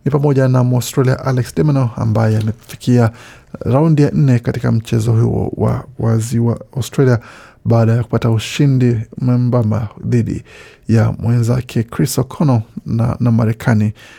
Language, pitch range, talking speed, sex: Swahili, 115-130 Hz, 140 wpm, male